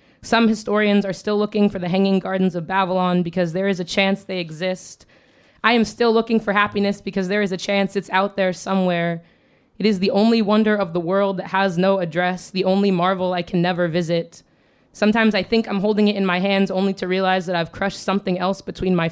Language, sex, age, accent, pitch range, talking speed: English, female, 20-39, American, 175-205 Hz, 225 wpm